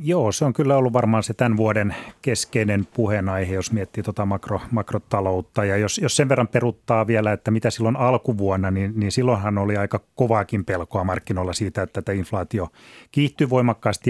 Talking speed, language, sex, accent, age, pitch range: 175 wpm, Finnish, male, native, 30-49, 100-115 Hz